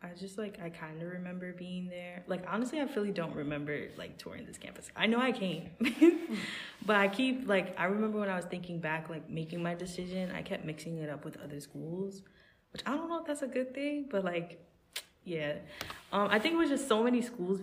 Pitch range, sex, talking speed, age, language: 160-200 Hz, female, 230 wpm, 10-29, English